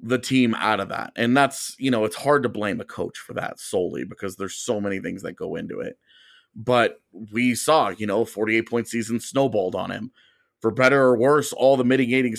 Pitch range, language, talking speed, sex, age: 110-130 Hz, English, 220 wpm, male, 30-49